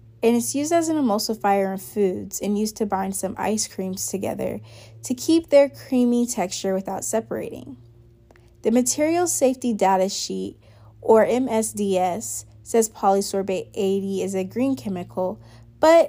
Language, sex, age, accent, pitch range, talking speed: English, female, 20-39, American, 185-235 Hz, 140 wpm